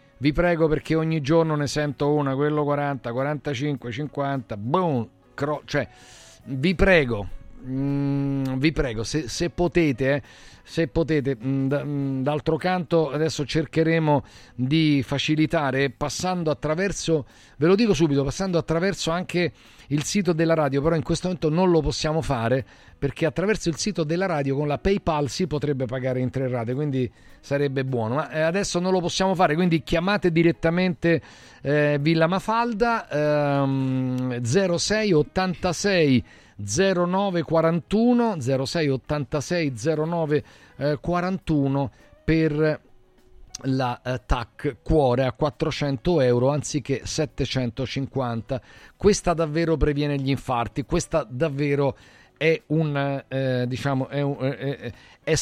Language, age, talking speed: Italian, 40-59, 125 wpm